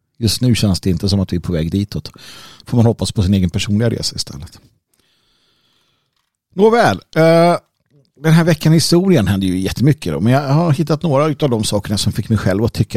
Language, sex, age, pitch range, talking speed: Swedish, male, 50-69, 100-140 Hz, 215 wpm